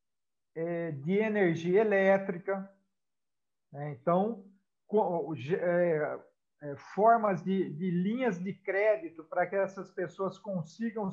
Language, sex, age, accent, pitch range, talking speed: Portuguese, male, 50-69, Brazilian, 175-220 Hz, 95 wpm